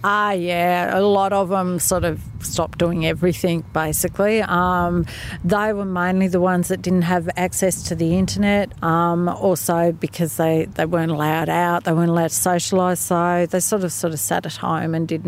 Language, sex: English, female